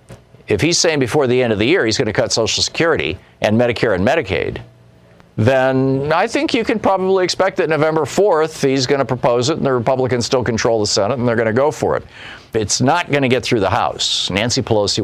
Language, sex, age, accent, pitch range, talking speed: English, male, 50-69, American, 110-155 Hz, 215 wpm